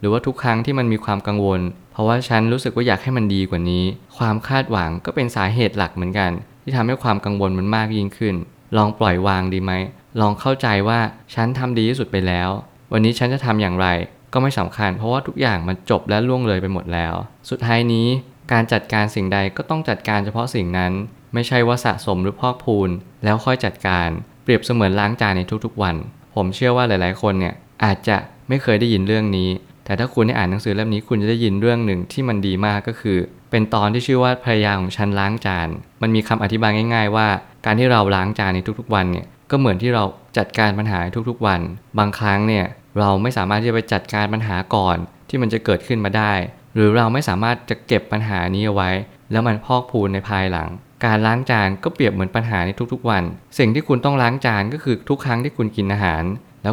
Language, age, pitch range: Thai, 20-39, 95-120 Hz